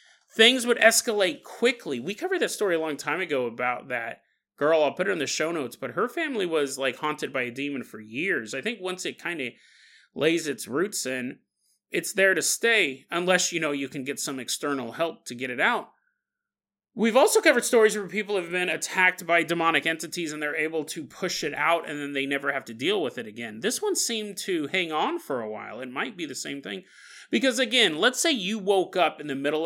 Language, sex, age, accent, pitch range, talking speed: English, male, 30-49, American, 145-225 Hz, 230 wpm